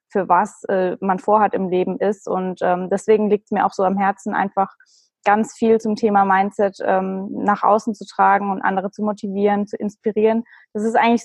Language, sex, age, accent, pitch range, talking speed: German, female, 20-39, German, 195-225 Hz, 205 wpm